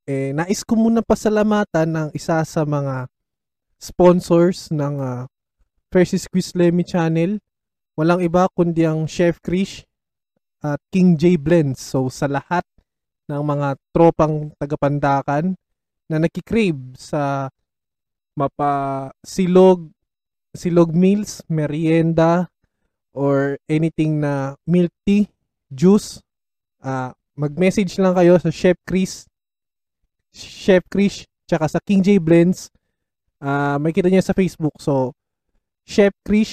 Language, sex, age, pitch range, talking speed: Filipino, male, 20-39, 145-185 Hz, 110 wpm